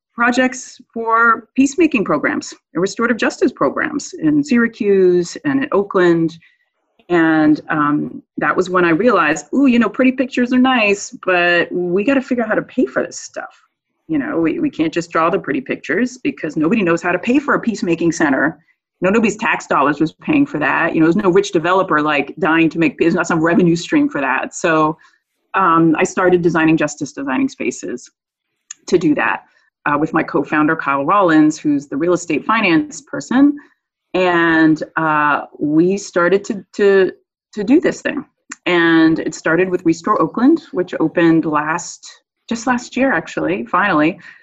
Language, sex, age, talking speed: English, female, 30-49, 175 wpm